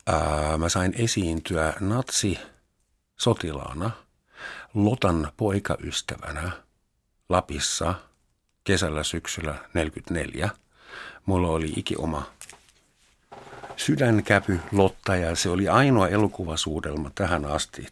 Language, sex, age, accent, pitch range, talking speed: Finnish, male, 50-69, native, 80-100 Hz, 75 wpm